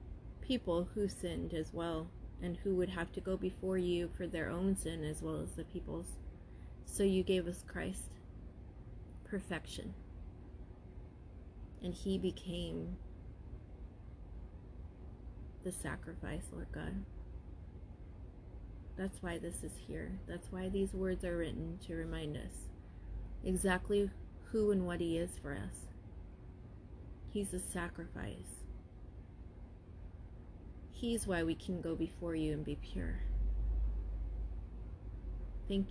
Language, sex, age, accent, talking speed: English, female, 30-49, American, 120 wpm